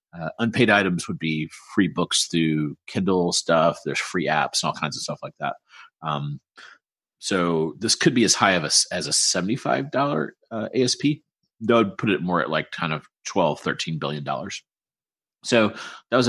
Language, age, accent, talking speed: English, 30-49, American, 200 wpm